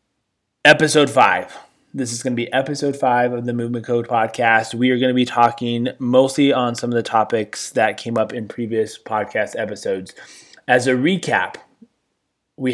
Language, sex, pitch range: English, male, 110-130 Hz